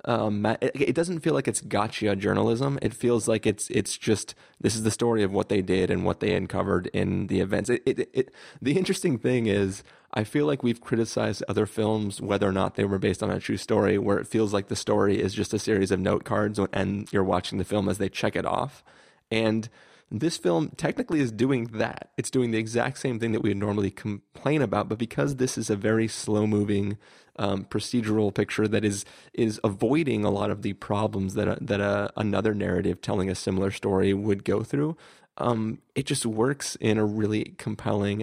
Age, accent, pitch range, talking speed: 30-49, American, 100-125 Hz, 210 wpm